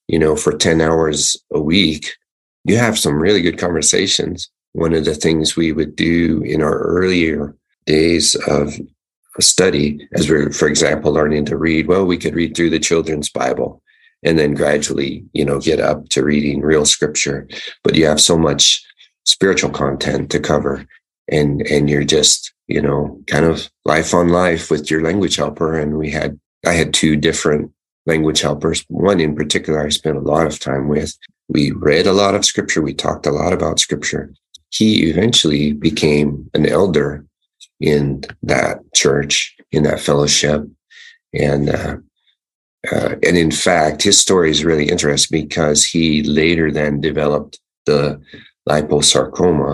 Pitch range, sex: 75-80 Hz, male